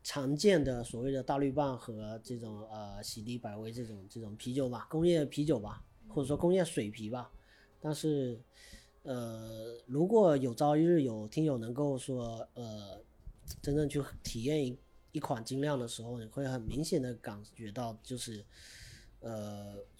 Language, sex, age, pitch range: Chinese, male, 30-49, 115-155 Hz